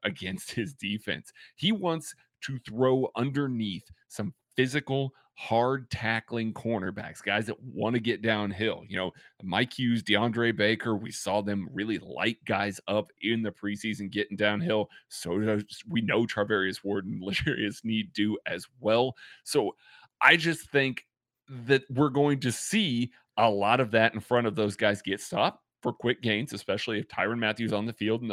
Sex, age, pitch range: male, 30-49, 105-120 Hz